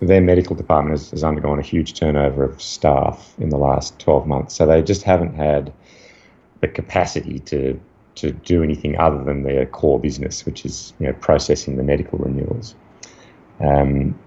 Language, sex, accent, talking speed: English, male, Australian, 175 wpm